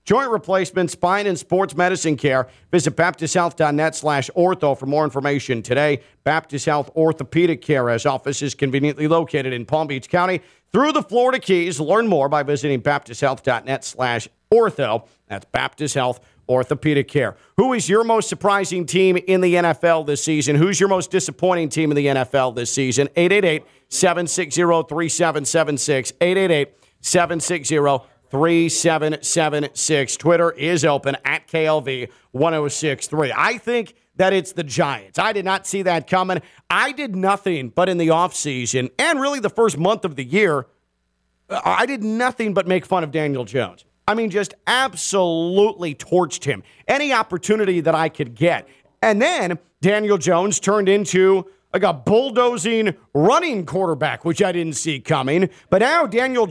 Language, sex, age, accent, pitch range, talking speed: English, male, 50-69, American, 145-190 Hz, 150 wpm